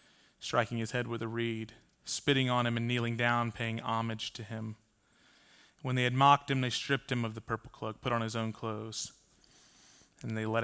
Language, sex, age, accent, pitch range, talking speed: English, male, 30-49, American, 120-145 Hz, 205 wpm